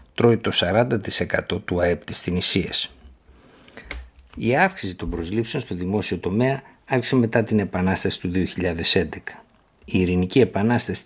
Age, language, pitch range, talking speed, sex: 50-69, Greek, 90-115 Hz, 125 wpm, male